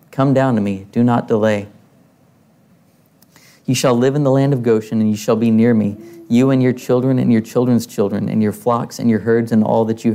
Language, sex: English, male